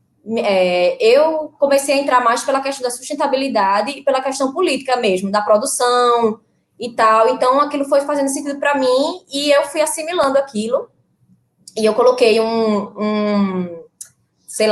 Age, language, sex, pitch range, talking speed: 20-39, Portuguese, female, 210-280 Hz, 150 wpm